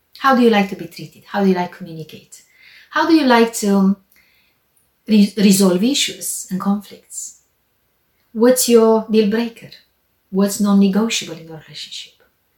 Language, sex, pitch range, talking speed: English, female, 185-240 Hz, 150 wpm